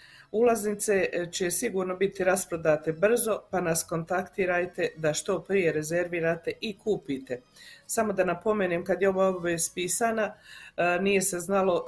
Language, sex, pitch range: Croatian, female, 170-205 Hz